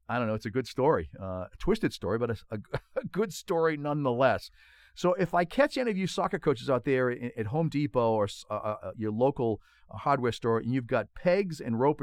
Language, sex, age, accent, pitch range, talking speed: English, male, 50-69, American, 110-155 Hz, 215 wpm